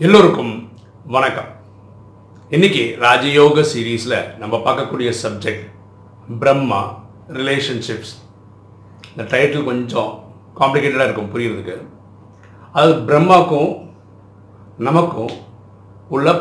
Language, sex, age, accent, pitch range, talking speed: Tamil, male, 50-69, native, 100-145 Hz, 75 wpm